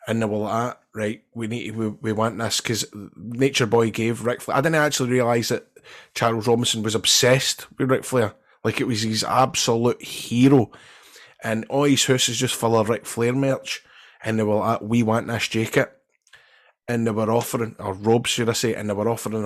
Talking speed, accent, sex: 215 wpm, British, male